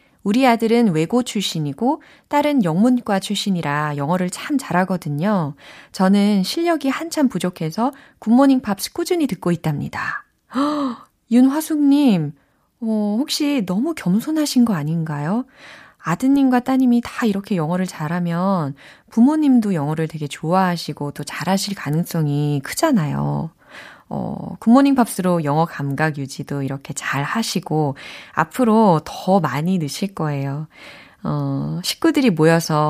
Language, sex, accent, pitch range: Korean, female, native, 155-250 Hz